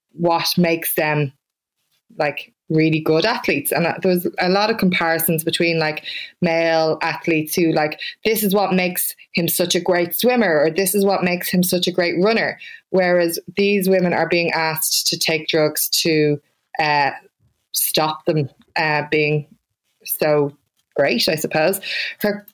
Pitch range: 160-190 Hz